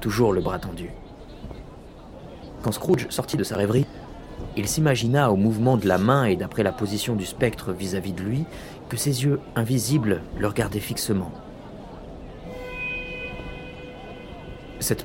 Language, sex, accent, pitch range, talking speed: French, male, French, 95-115 Hz, 135 wpm